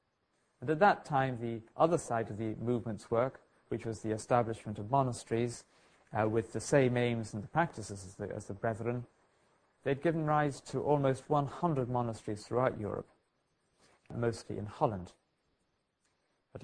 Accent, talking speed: British, 150 wpm